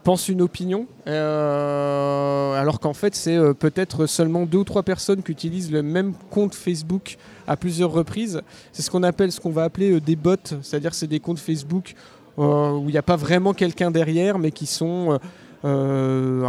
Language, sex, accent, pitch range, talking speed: French, male, French, 145-180 Hz, 195 wpm